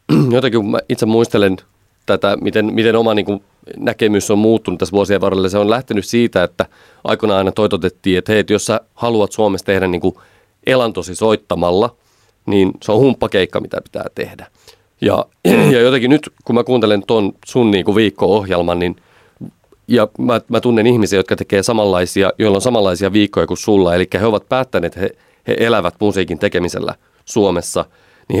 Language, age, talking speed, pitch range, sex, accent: Finnish, 30-49, 170 wpm, 95-110 Hz, male, native